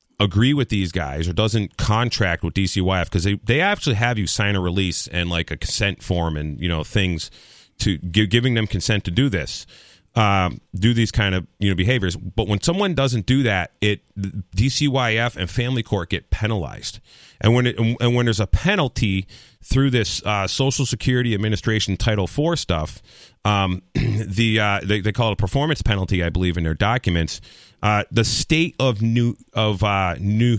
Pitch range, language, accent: 95-120 Hz, English, American